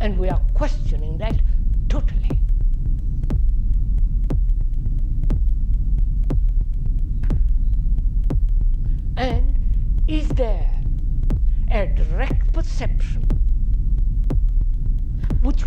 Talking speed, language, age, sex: 50 wpm, English, 60-79, female